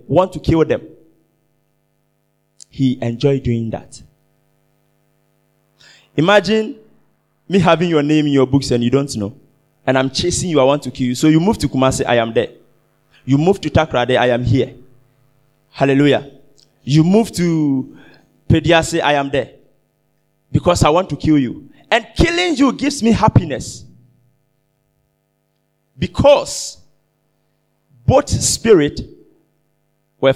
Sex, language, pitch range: male, English, 135-200 Hz